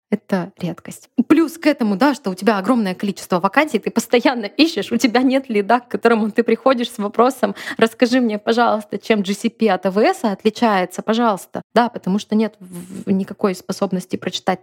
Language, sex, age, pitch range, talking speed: Russian, female, 20-39, 185-235 Hz, 170 wpm